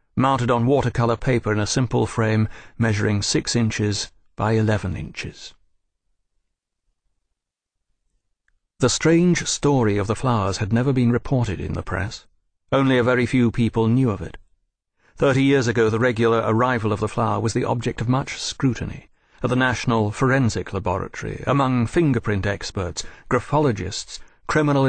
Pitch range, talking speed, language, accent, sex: 100-125 Hz, 145 wpm, English, British, male